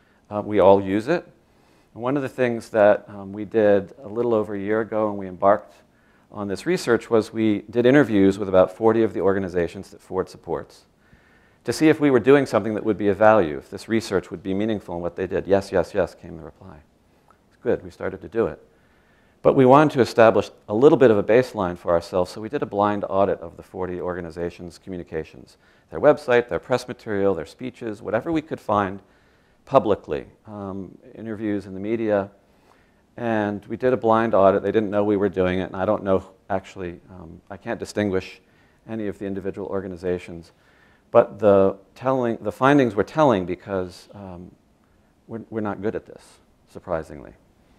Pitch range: 95-115 Hz